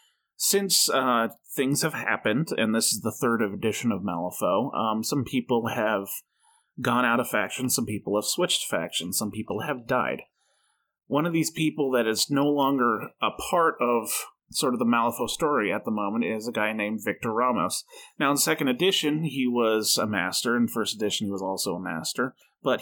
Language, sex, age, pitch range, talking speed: English, male, 30-49, 110-145 Hz, 190 wpm